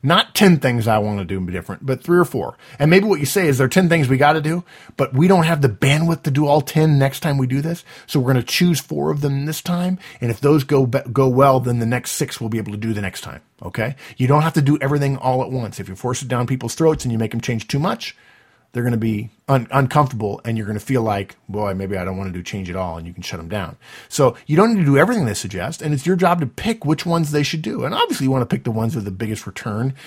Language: English